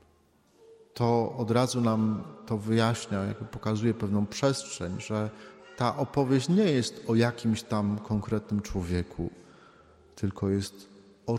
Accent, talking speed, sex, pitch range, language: native, 115 wpm, male, 105-125 Hz, Polish